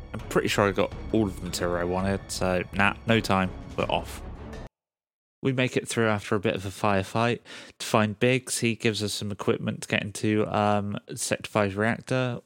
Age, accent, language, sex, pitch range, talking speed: 20-39, British, English, male, 100-120 Hz, 195 wpm